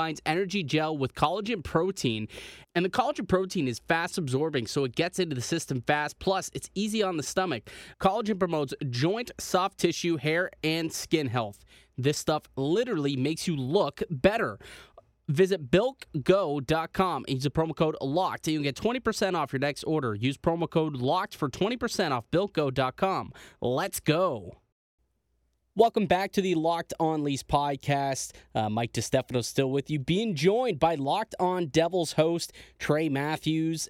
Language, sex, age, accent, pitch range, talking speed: English, male, 20-39, American, 135-180 Hz, 165 wpm